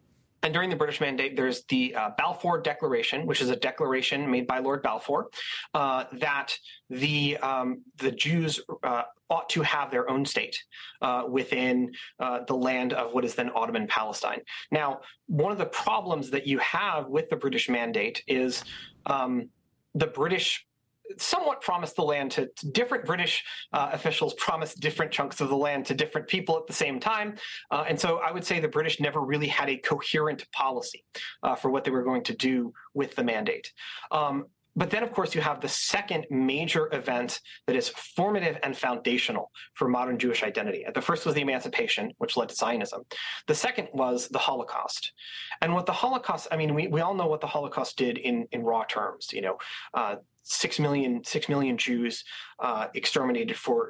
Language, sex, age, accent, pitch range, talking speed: English, male, 30-49, American, 130-180 Hz, 185 wpm